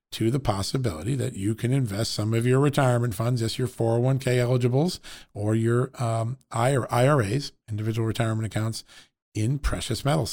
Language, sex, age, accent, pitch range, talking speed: English, male, 50-69, American, 115-130 Hz, 150 wpm